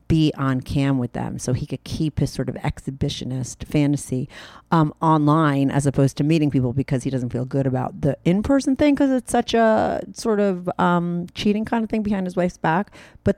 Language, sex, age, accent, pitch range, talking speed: English, female, 40-59, American, 140-180 Hz, 205 wpm